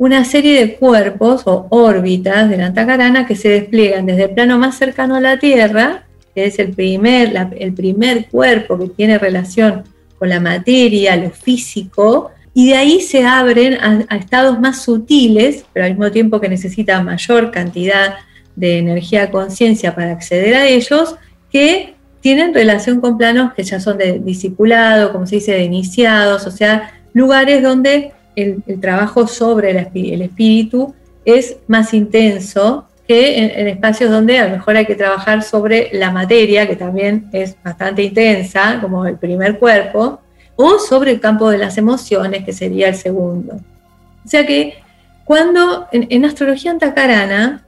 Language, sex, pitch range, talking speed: Spanish, female, 190-245 Hz, 165 wpm